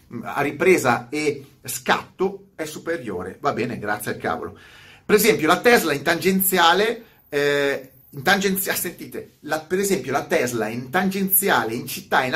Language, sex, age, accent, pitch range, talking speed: Italian, male, 30-49, native, 130-195 Hz, 150 wpm